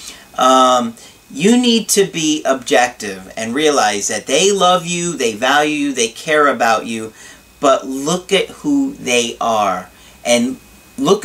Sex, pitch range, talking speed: male, 135-185 Hz, 145 wpm